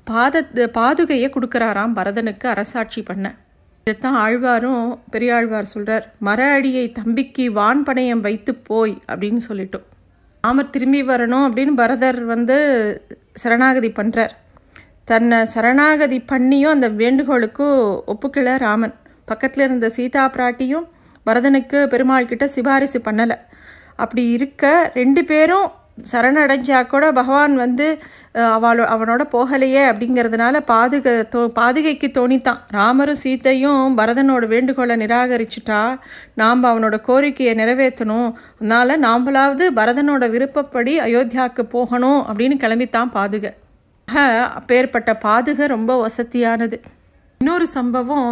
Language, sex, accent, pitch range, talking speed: Tamil, female, native, 230-270 Hz, 100 wpm